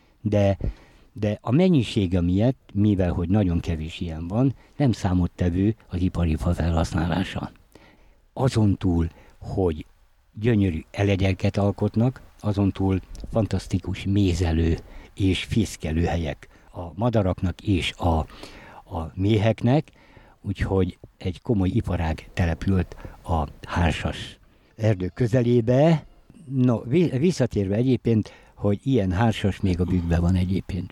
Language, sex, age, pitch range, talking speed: Hungarian, male, 60-79, 90-115 Hz, 105 wpm